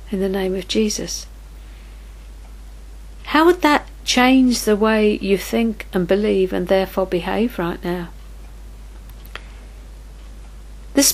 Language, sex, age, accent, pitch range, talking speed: English, female, 50-69, British, 175-235 Hz, 115 wpm